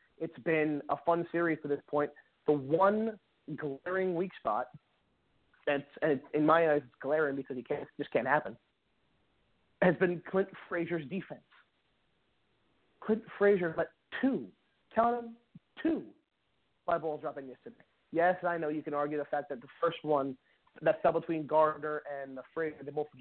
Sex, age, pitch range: male, 30-49, 145-185 Hz